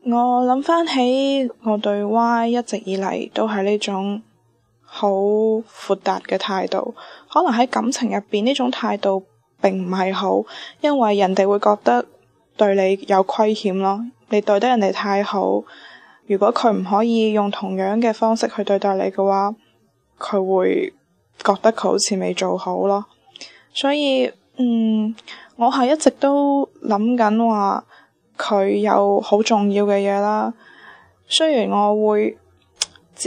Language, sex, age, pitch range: Chinese, female, 10-29, 200-235 Hz